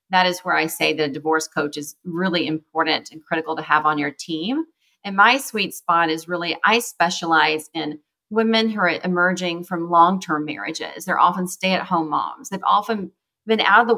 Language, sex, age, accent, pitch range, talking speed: English, female, 30-49, American, 160-195 Hz, 190 wpm